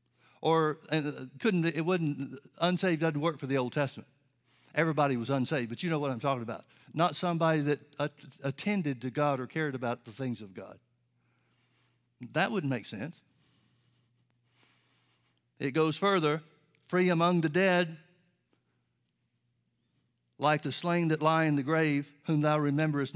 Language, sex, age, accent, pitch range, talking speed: English, male, 60-79, American, 130-170 Hz, 150 wpm